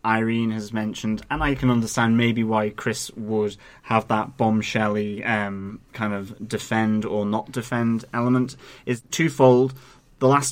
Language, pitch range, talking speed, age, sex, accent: English, 110-125 Hz, 145 wpm, 30-49, male, British